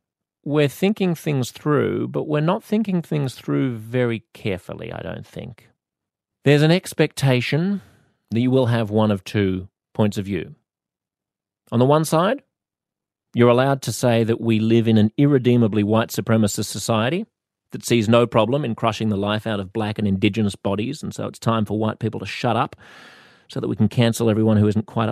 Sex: male